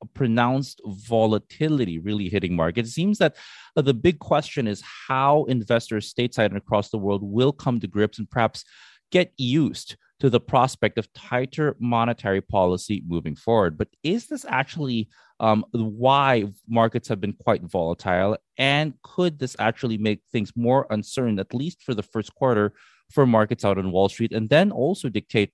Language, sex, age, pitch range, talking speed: English, male, 30-49, 105-130 Hz, 170 wpm